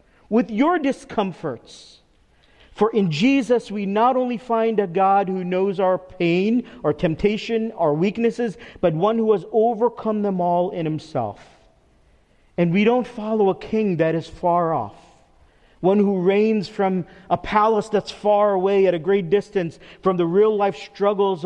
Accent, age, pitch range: American, 40-59, 160-205 Hz